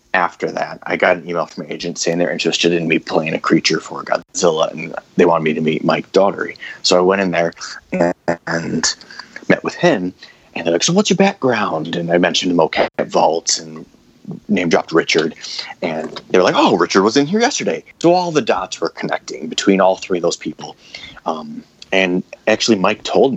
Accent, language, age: American, English, 30-49